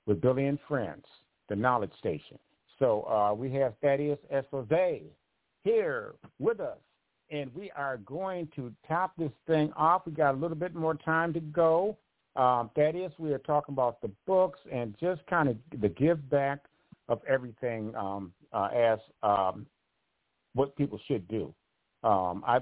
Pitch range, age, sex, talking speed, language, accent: 110-150 Hz, 50-69, male, 160 wpm, English, American